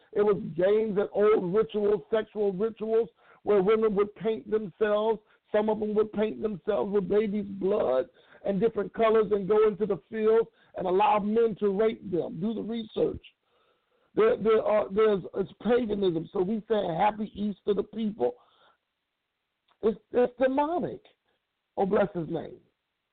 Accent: American